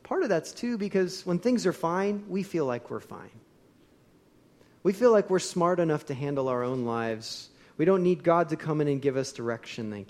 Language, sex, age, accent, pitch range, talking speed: English, male, 40-59, American, 130-185 Hz, 220 wpm